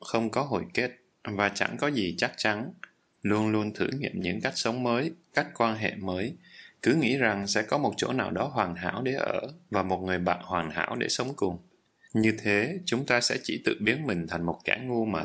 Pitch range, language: 85-120 Hz, Vietnamese